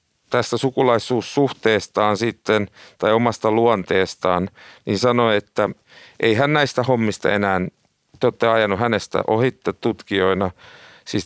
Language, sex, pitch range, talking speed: Finnish, male, 100-125 Hz, 105 wpm